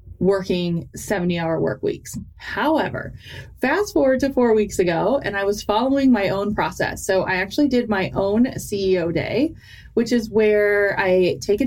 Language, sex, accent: English, female, American